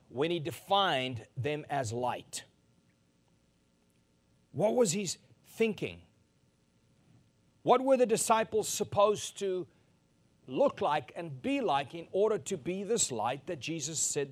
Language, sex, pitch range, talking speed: English, male, 135-205 Hz, 125 wpm